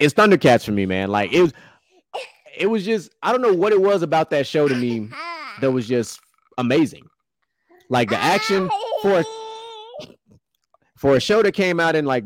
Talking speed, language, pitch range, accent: 180 wpm, English, 120-195 Hz, American